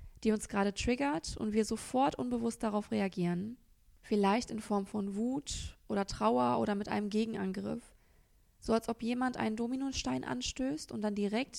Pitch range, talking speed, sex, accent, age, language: 205-245 Hz, 160 wpm, female, German, 20-39, German